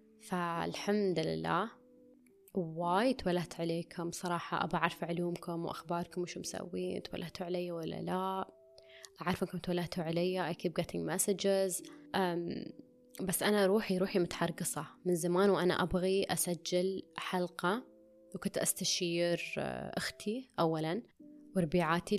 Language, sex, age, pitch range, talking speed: Arabic, female, 20-39, 170-200 Hz, 90 wpm